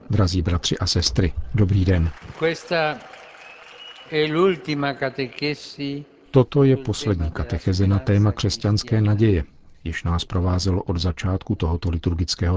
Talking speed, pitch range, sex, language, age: 100 wpm, 85-110 Hz, male, Czech, 50-69